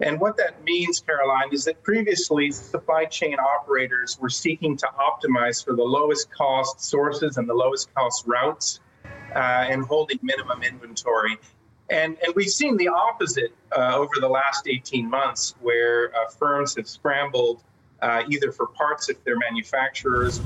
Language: English